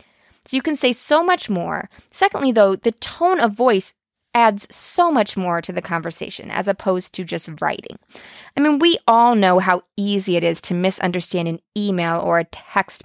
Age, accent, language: 20-39, American, English